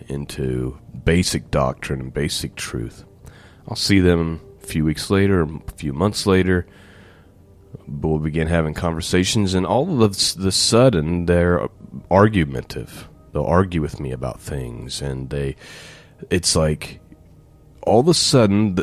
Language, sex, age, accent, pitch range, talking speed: English, male, 30-49, American, 75-95 Hz, 130 wpm